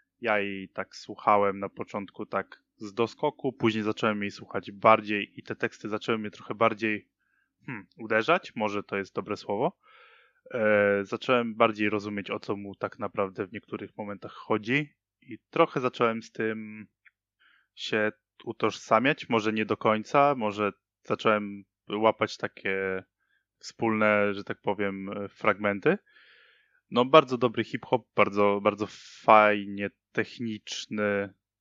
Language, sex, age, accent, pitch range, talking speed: Polish, male, 20-39, native, 105-120 Hz, 125 wpm